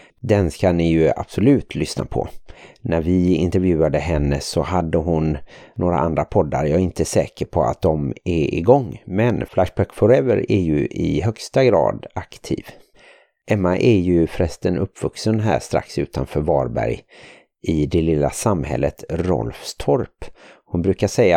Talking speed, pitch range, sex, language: 145 wpm, 80-95 Hz, male, Swedish